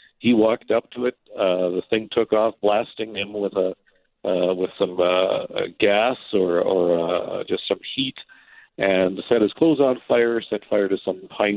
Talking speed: 185 wpm